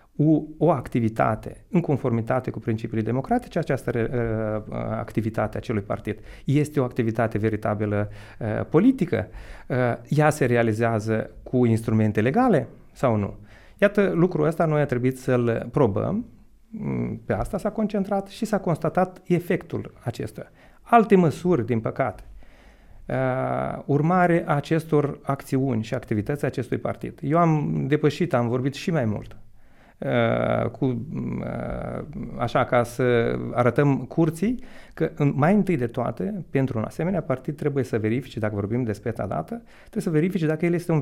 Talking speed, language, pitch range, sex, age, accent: 140 wpm, Romanian, 115-160 Hz, male, 30-49, native